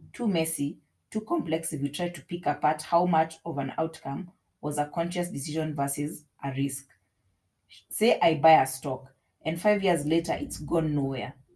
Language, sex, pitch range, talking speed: English, female, 140-175 Hz, 175 wpm